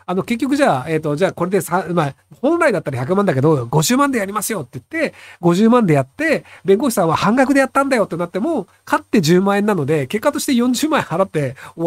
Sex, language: male, Japanese